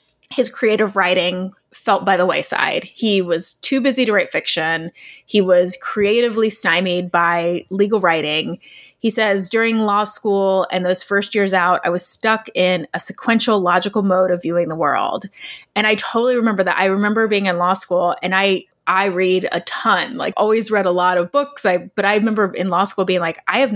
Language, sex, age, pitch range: English, female, 20-39, 180-220 Hz